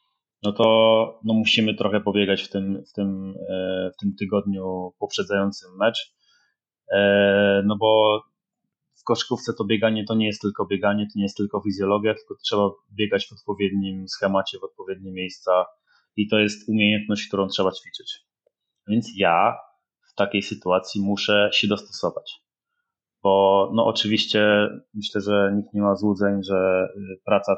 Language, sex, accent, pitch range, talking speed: Polish, male, native, 100-110 Hz, 135 wpm